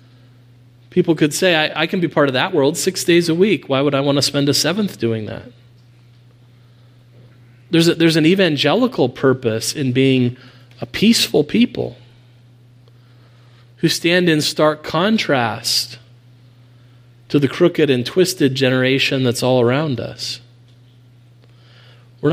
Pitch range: 120-140 Hz